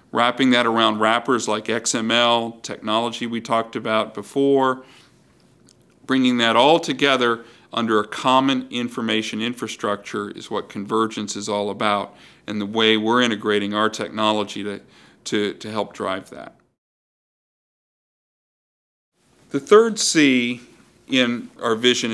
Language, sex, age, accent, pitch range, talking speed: English, male, 50-69, American, 110-130 Hz, 120 wpm